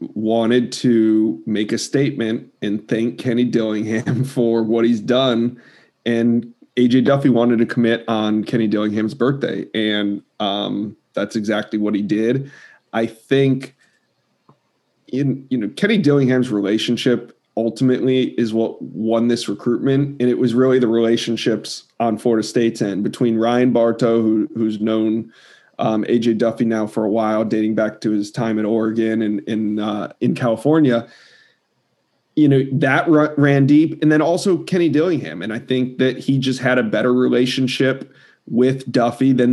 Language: English